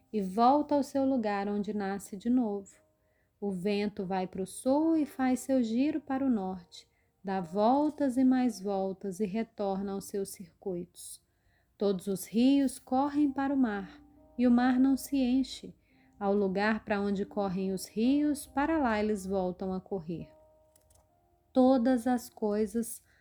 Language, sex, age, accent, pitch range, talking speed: Portuguese, female, 30-49, Brazilian, 195-260 Hz, 160 wpm